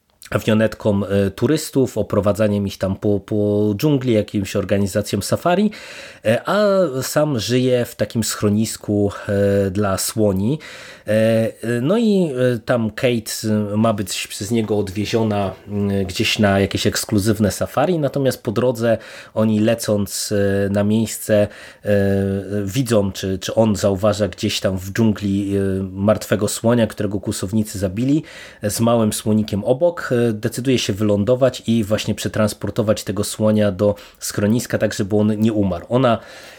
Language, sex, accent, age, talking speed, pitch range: Polish, male, native, 30-49, 120 wpm, 100-120 Hz